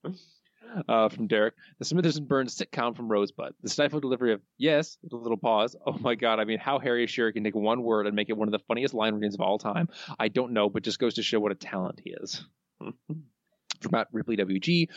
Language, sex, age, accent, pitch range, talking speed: English, male, 20-39, American, 115-165 Hz, 240 wpm